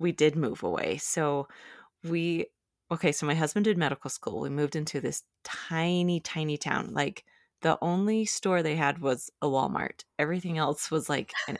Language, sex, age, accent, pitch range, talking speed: English, female, 20-39, American, 145-175 Hz, 175 wpm